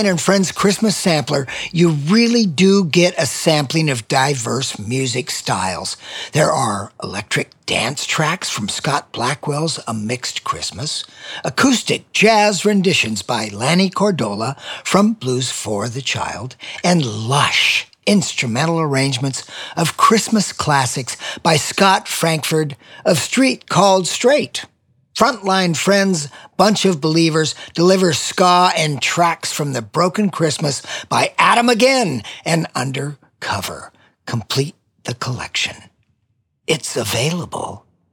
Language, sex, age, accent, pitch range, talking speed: English, male, 50-69, American, 130-195 Hz, 115 wpm